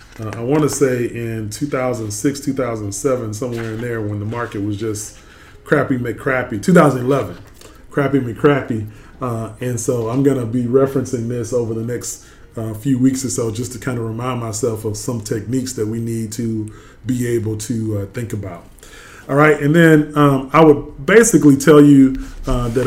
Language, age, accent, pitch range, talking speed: English, 20-39, American, 115-135 Hz, 180 wpm